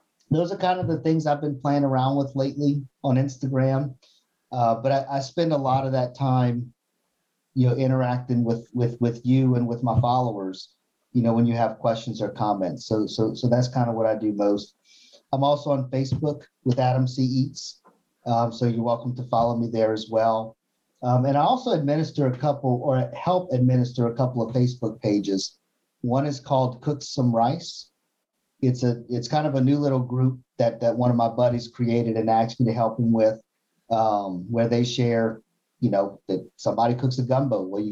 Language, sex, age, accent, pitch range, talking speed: English, male, 50-69, American, 115-130 Hz, 205 wpm